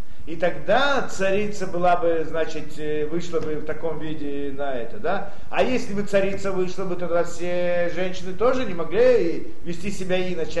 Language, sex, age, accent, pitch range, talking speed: Russian, male, 40-59, native, 170-225 Hz, 165 wpm